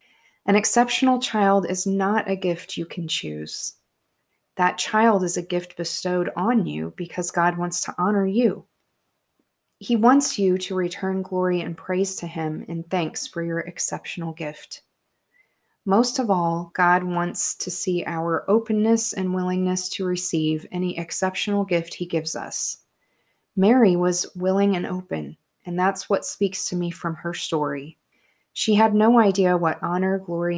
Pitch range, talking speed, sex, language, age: 170-200 Hz, 155 wpm, female, English, 30-49